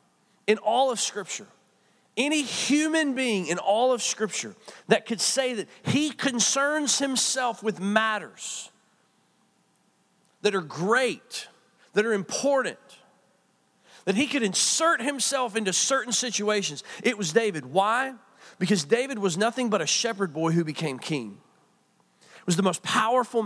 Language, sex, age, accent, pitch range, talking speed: English, male, 40-59, American, 140-225 Hz, 140 wpm